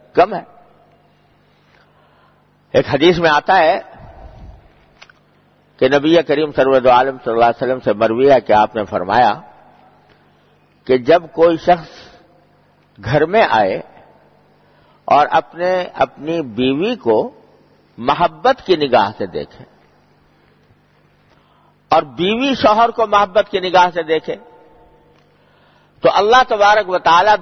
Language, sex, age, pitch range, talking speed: English, male, 50-69, 145-220 Hz, 105 wpm